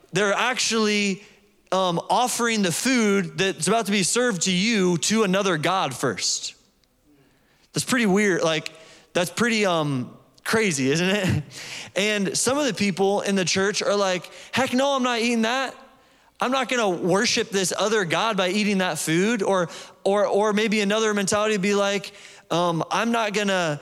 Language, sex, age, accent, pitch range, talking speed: English, male, 20-39, American, 170-215 Hz, 170 wpm